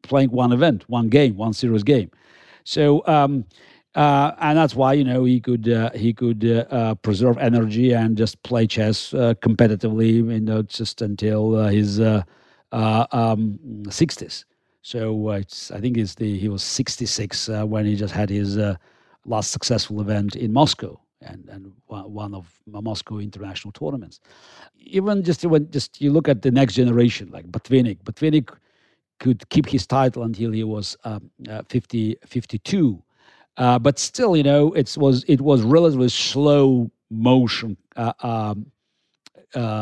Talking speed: 165 wpm